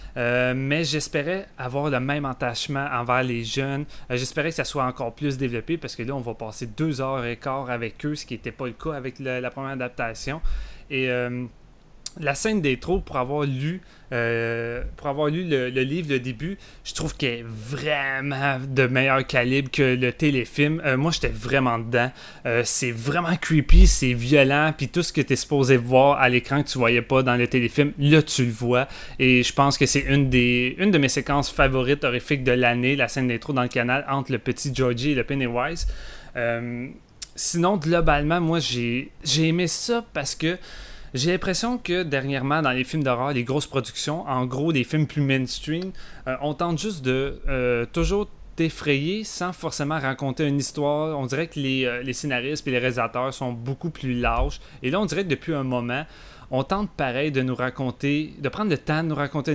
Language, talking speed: French, 210 wpm